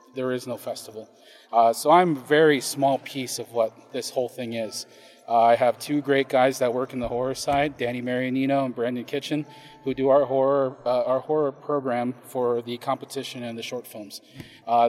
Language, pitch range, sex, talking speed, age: English, 120-140 Hz, male, 200 wpm, 30-49